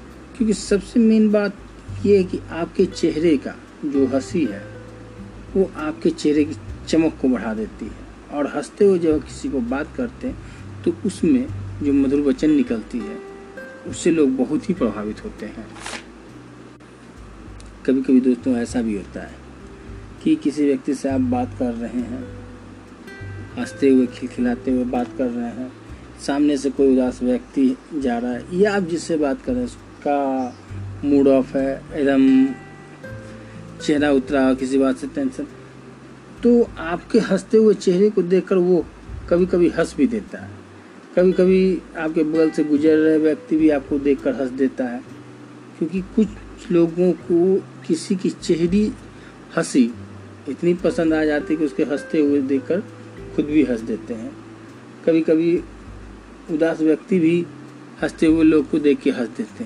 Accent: native